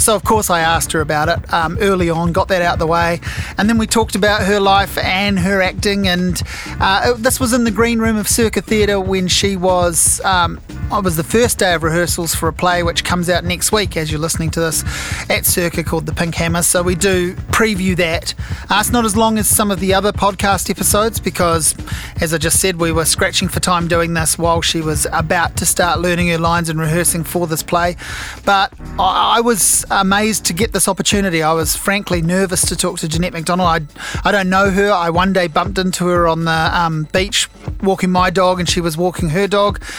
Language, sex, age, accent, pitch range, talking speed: English, male, 30-49, Australian, 170-195 Hz, 230 wpm